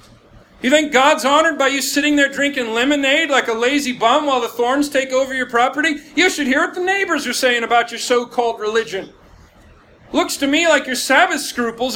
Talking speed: 200 wpm